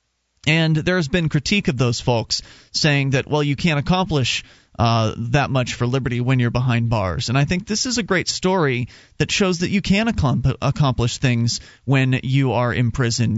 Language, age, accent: English, 30-49, American